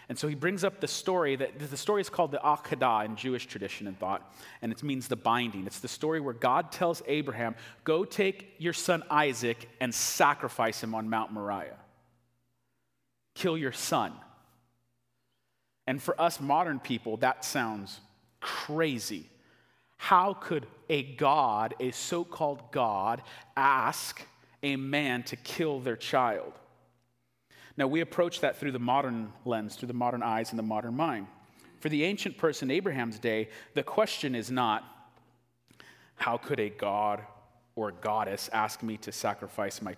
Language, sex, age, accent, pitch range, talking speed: English, male, 30-49, American, 115-150 Hz, 155 wpm